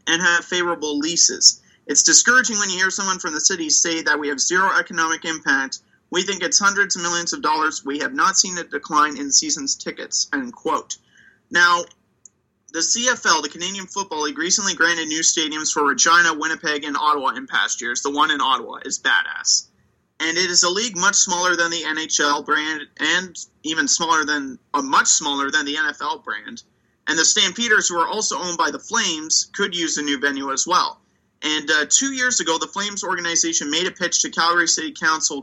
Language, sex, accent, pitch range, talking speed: English, male, American, 155-205 Hz, 200 wpm